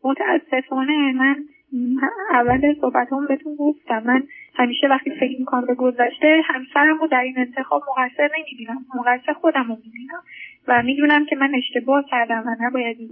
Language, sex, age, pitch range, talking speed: Persian, female, 10-29, 245-290 Hz, 155 wpm